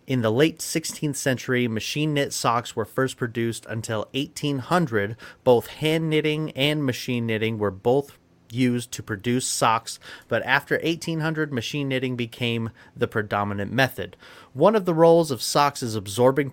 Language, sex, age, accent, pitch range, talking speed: English, male, 30-49, American, 110-140 Hz, 140 wpm